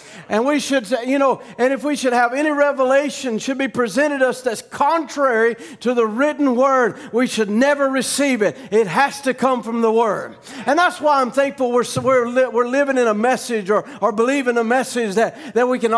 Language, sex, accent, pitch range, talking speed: English, male, American, 235-280 Hz, 220 wpm